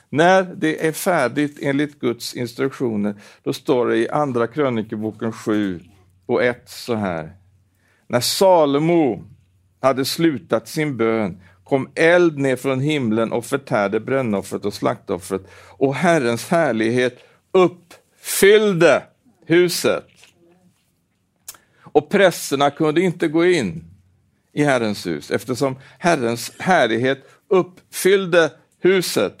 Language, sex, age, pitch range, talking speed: Swedish, male, 60-79, 115-165 Hz, 110 wpm